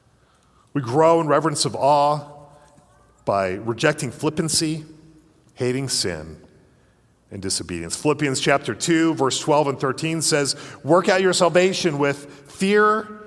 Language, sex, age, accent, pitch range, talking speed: English, male, 40-59, American, 125-150 Hz, 120 wpm